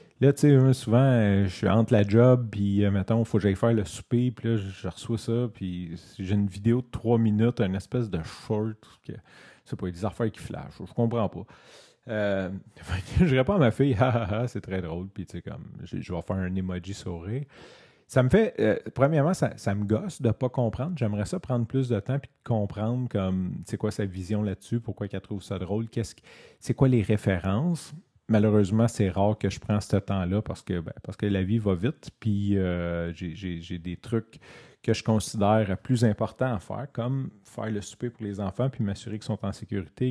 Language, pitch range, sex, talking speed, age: French, 100-125 Hz, male, 225 wpm, 30-49